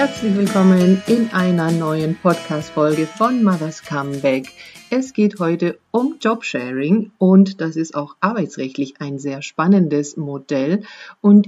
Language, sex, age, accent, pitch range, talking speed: German, female, 50-69, German, 155-205 Hz, 125 wpm